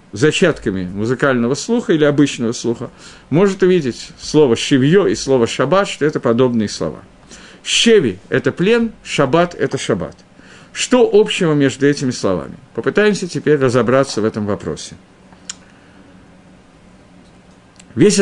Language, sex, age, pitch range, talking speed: Russian, male, 50-69, 120-175 Hz, 120 wpm